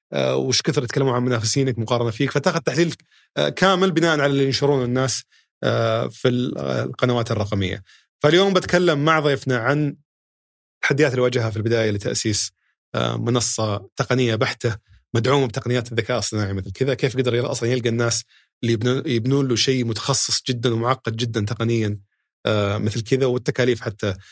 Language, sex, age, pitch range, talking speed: Arabic, male, 30-49, 115-140 Hz, 140 wpm